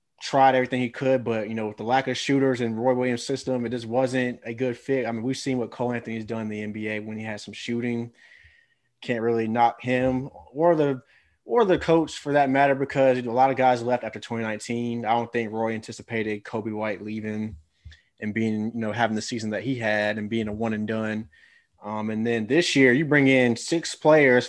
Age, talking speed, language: 20-39, 225 wpm, English